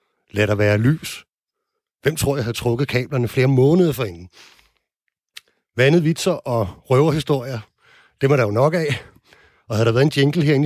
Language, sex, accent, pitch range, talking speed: Danish, male, native, 110-145 Hz, 170 wpm